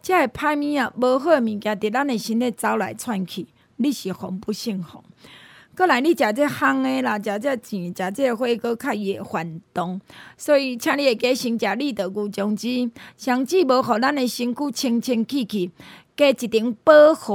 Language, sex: Chinese, female